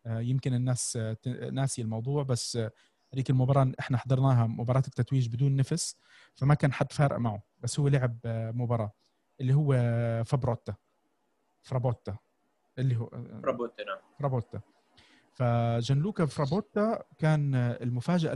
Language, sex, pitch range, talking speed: Arabic, male, 125-155 Hz, 115 wpm